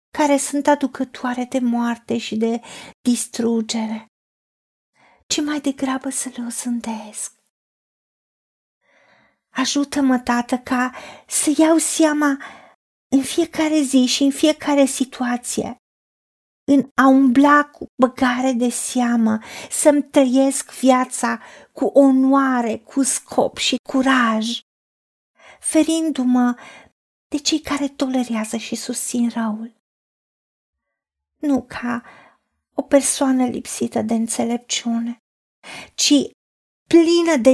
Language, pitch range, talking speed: Romanian, 235-285 Hz, 100 wpm